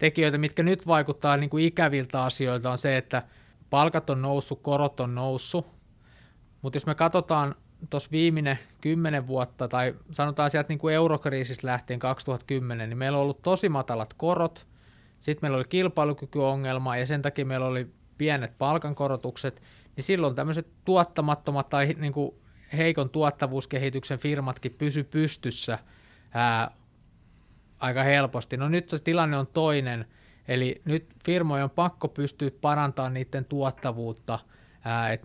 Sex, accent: male, native